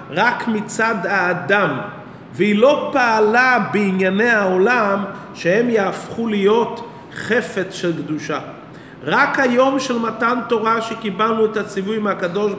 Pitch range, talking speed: 190-250 Hz, 110 wpm